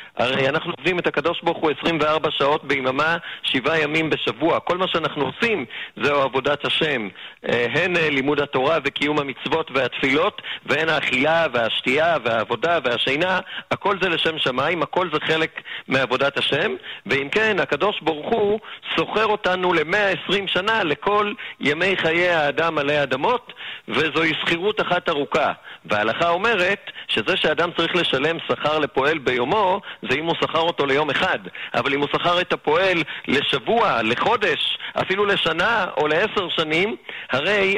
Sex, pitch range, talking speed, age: male, 150-190 Hz, 140 wpm, 50-69